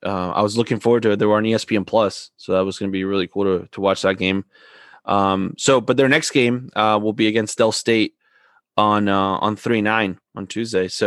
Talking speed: 245 wpm